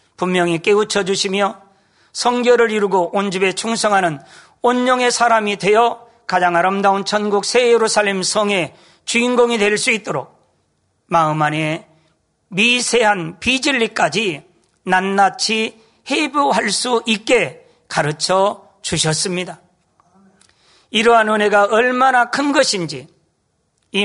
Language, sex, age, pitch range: Korean, male, 40-59, 175-225 Hz